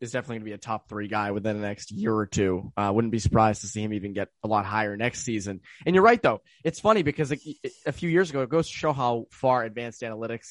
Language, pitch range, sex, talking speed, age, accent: English, 110-150 Hz, male, 275 wpm, 20-39, American